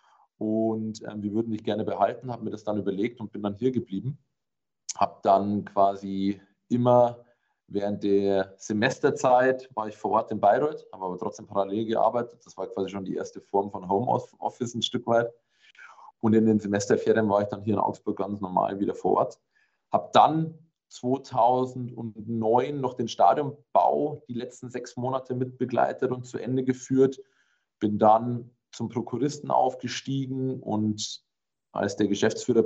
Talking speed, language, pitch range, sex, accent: 160 wpm, German, 100-120 Hz, male, German